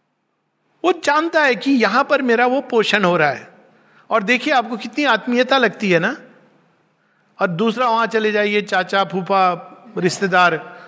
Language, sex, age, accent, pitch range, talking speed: Hindi, male, 50-69, native, 185-250 Hz, 155 wpm